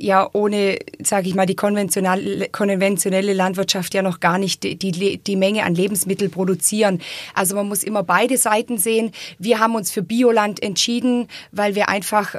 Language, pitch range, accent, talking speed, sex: German, 200-230 Hz, German, 175 wpm, female